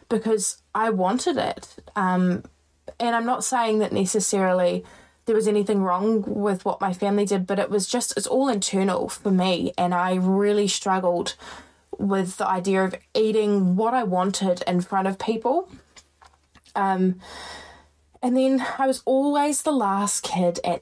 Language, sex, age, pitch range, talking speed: English, female, 20-39, 185-240 Hz, 160 wpm